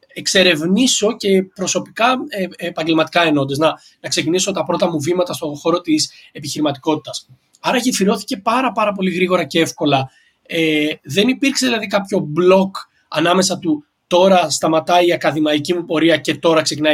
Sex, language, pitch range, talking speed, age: male, Greek, 155-210 Hz, 145 wpm, 20-39